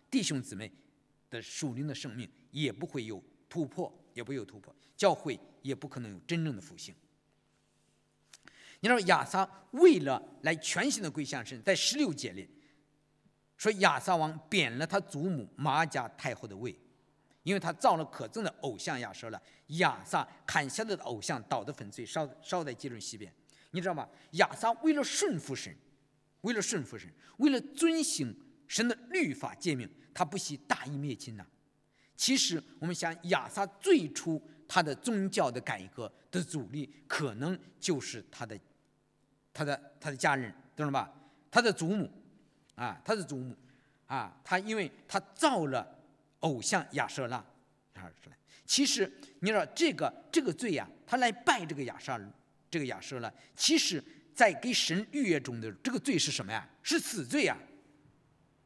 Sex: male